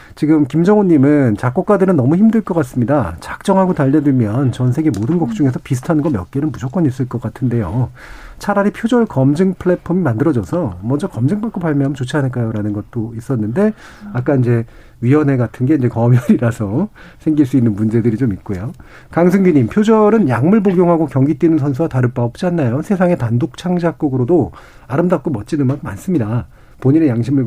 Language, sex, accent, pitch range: Korean, male, native, 120-165 Hz